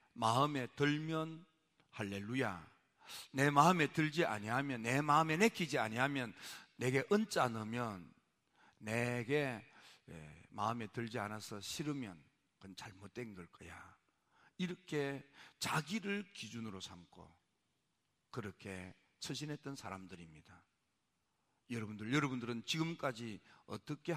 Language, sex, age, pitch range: Korean, male, 50-69, 105-150 Hz